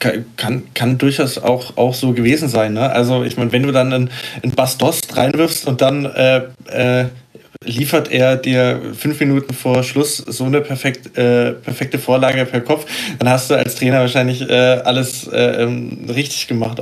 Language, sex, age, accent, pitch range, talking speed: German, male, 20-39, German, 120-135 Hz, 170 wpm